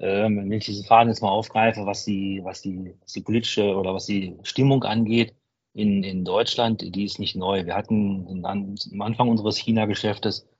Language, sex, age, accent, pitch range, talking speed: German, male, 40-59, German, 95-110 Hz, 180 wpm